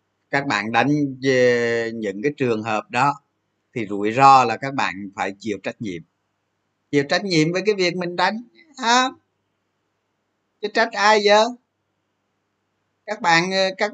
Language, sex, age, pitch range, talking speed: Vietnamese, male, 20-39, 110-165 Hz, 150 wpm